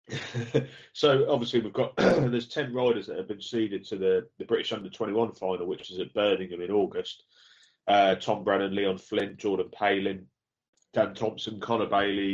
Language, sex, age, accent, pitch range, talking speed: English, male, 30-49, British, 95-115 Hz, 170 wpm